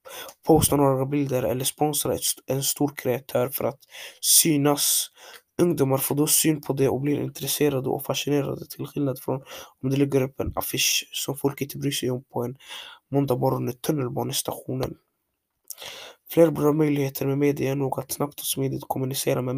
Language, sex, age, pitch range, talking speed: Swedish, male, 20-39, 135-155 Hz, 170 wpm